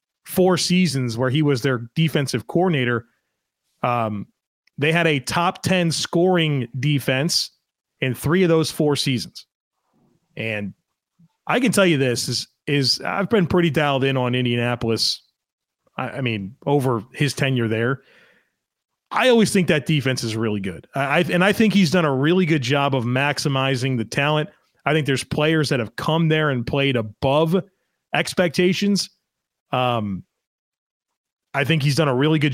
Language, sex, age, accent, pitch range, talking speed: English, male, 30-49, American, 135-165 Hz, 155 wpm